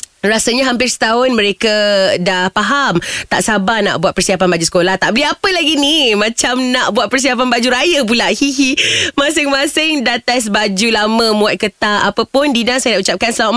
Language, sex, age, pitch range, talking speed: Malay, female, 20-39, 185-265 Hz, 175 wpm